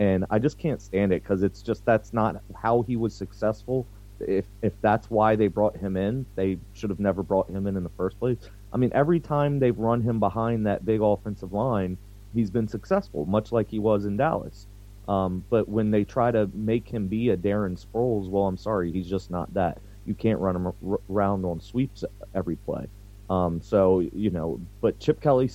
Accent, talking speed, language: American, 210 wpm, English